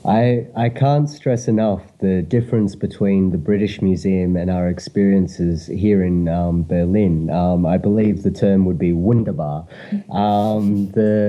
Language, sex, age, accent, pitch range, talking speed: German, male, 30-49, Australian, 90-105 Hz, 150 wpm